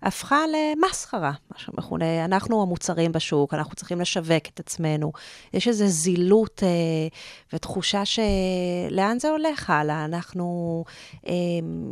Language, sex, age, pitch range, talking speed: Hebrew, female, 30-49, 170-200 Hz, 115 wpm